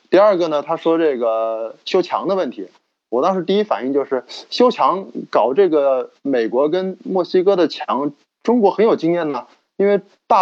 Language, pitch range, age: Chinese, 135-180 Hz, 20-39